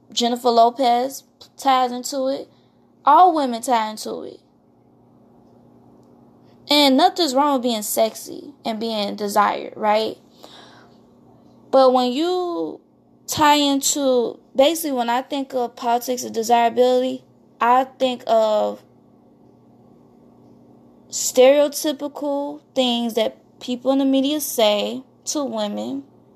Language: English